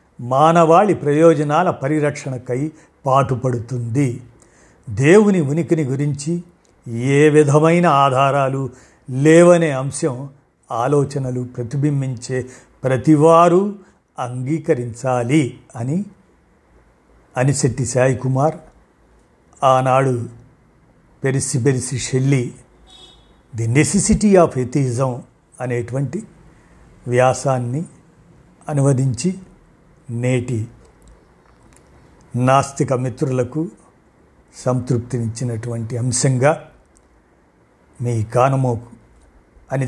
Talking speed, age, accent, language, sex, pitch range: 55 wpm, 50-69, native, Telugu, male, 120-150 Hz